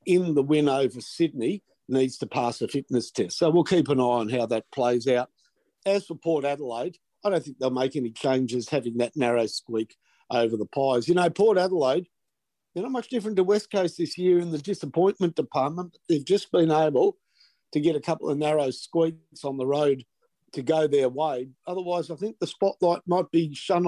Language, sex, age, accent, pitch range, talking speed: English, male, 50-69, Australian, 140-185 Hz, 205 wpm